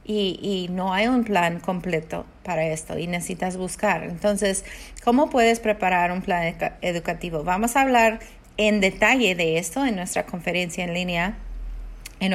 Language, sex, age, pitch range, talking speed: Spanish, female, 30-49, 175-215 Hz, 155 wpm